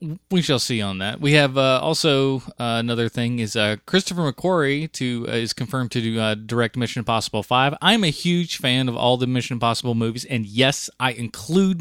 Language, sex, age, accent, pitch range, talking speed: English, male, 30-49, American, 115-145 Hz, 210 wpm